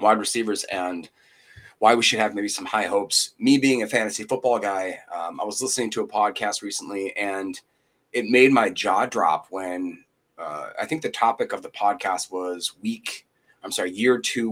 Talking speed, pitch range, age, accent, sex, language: 190 wpm, 100-125 Hz, 30-49, American, male, English